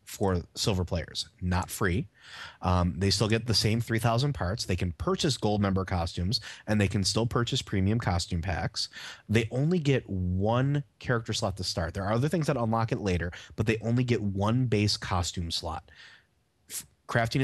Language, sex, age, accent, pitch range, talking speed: English, male, 30-49, American, 95-120 Hz, 180 wpm